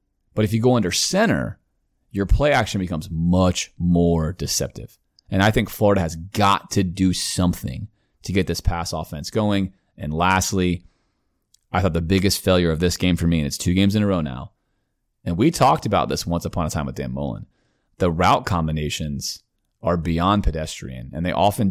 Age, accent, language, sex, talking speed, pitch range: 30-49, American, English, male, 190 wpm, 80-105 Hz